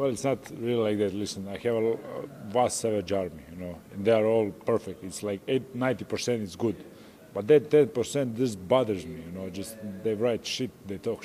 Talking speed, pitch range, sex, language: 210 wpm, 105-130 Hz, male, English